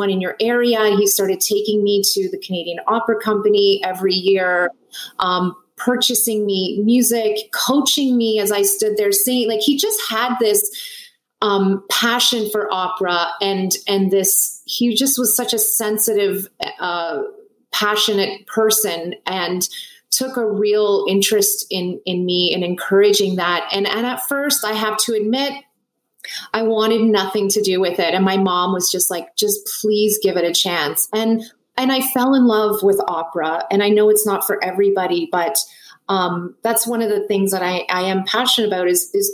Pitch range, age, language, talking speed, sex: 190-230 Hz, 30-49, English, 175 wpm, female